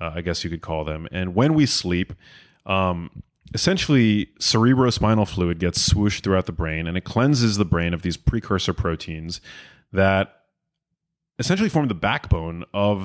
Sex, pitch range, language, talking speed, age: male, 90-115 Hz, English, 160 wpm, 30-49